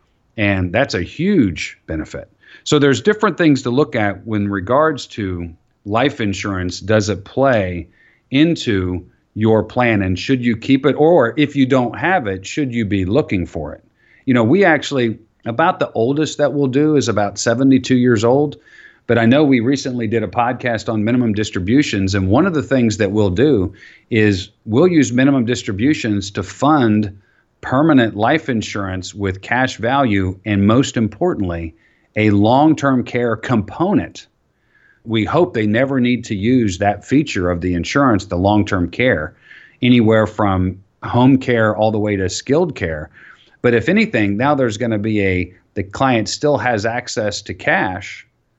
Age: 40-59